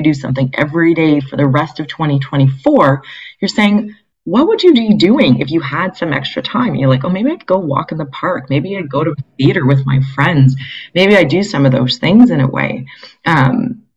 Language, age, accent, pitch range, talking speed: English, 30-49, American, 135-175 Hz, 230 wpm